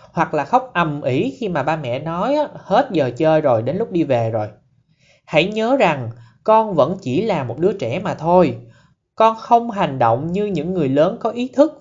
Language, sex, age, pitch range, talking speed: Vietnamese, male, 20-39, 130-185 Hz, 215 wpm